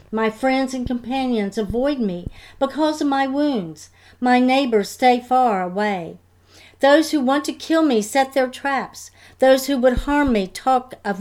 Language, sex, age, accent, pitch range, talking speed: English, female, 50-69, American, 205-265 Hz, 165 wpm